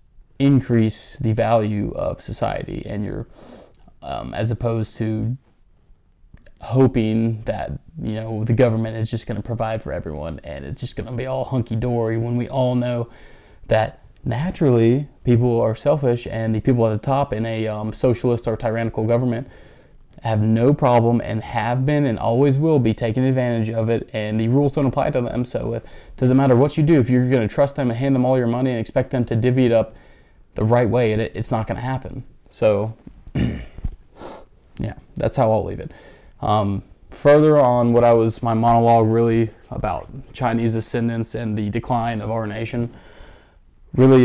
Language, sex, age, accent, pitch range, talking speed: English, male, 20-39, American, 110-130 Hz, 185 wpm